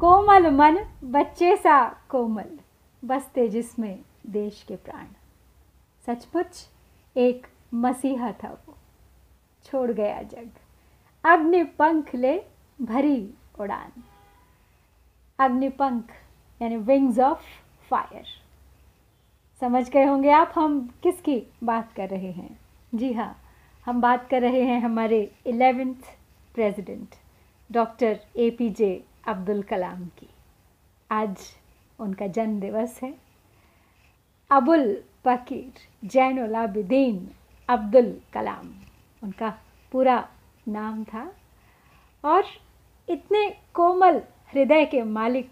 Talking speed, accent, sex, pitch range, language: 100 wpm, native, female, 225-285 Hz, Hindi